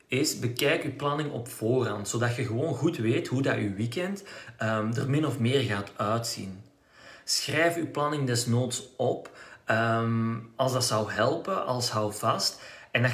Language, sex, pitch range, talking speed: Dutch, male, 110-135 Hz, 165 wpm